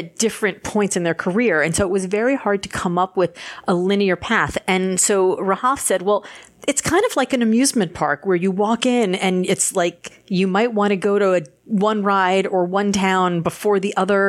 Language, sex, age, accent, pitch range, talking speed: English, female, 40-59, American, 180-220 Hz, 225 wpm